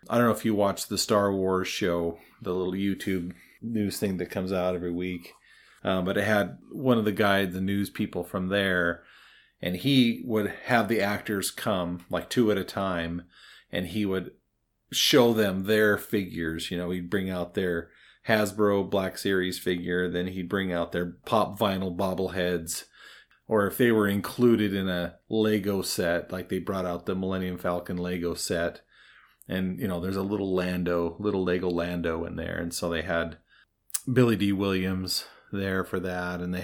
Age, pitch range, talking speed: 30-49, 90-110 Hz, 185 wpm